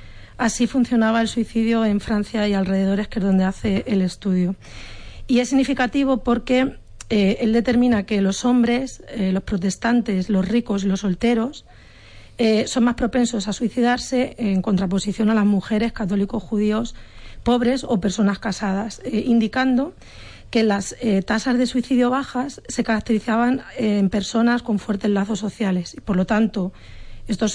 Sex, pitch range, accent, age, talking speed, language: female, 200-235 Hz, Spanish, 40-59, 155 wpm, Spanish